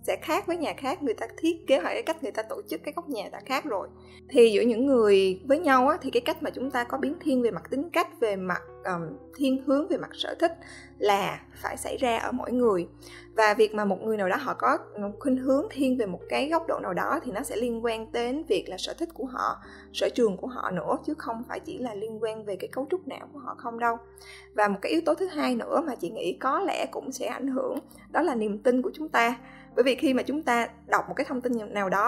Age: 20-39